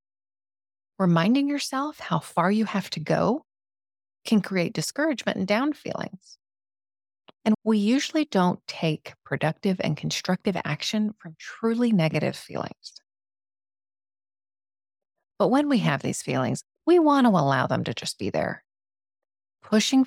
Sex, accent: female, American